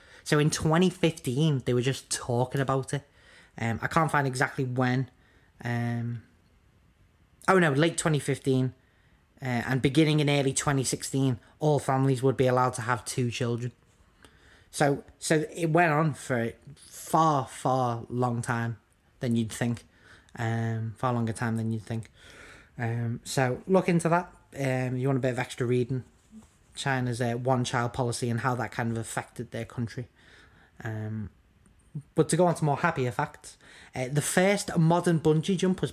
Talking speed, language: 160 wpm, English